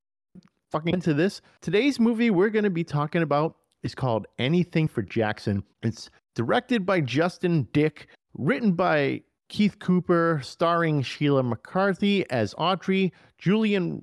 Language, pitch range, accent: English, 140-205 Hz, American